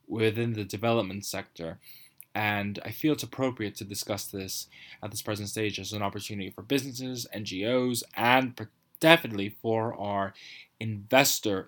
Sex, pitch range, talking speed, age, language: male, 105-140 Hz, 140 wpm, 20-39, English